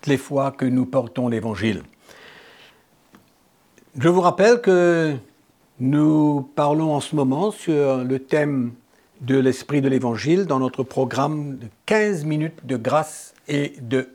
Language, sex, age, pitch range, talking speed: French, male, 60-79, 130-165 Hz, 135 wpm